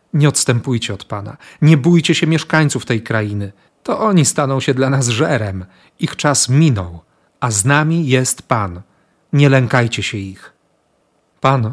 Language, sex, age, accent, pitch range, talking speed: Polish, male, 40-59, native, 120-145 Hz, 155 wpm